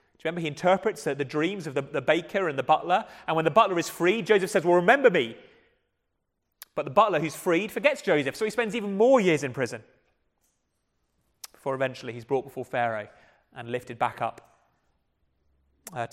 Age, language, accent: 30-49, English, British